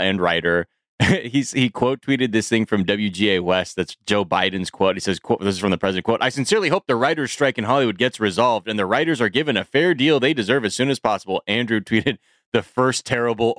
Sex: male